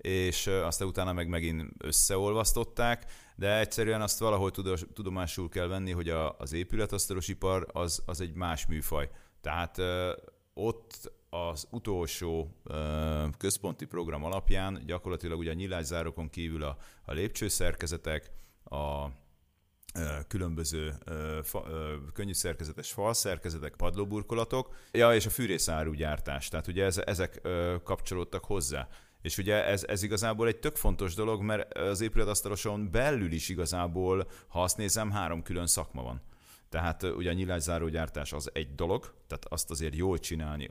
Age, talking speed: 30-49, 120 wpm